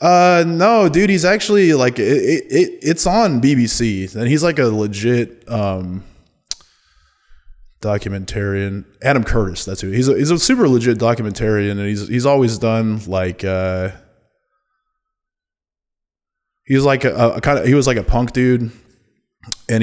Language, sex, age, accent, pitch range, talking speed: English, male, 20-39, American, 100-135 Hz, 150 wpm